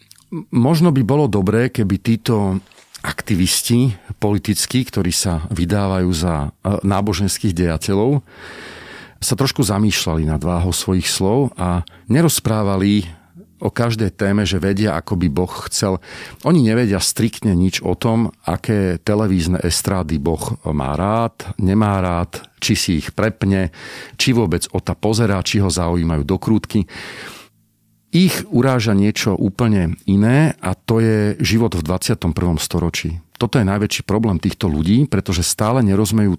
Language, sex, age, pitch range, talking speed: Slovak, male, 40-59, 90-115 Hz, 130 wpm